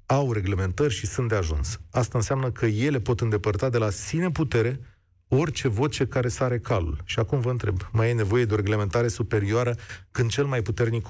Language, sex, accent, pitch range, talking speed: Romanian, male, native, 105-140 Hz, 195 wpm